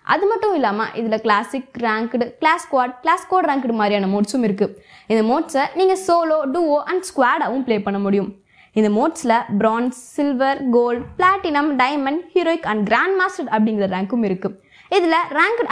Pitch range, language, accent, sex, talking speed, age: 215-315 Hz, Tamil, native, female, 145 wpm, 20-39